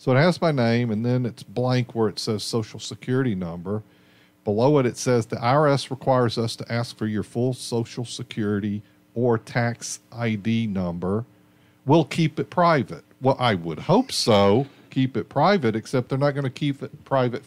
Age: 50-69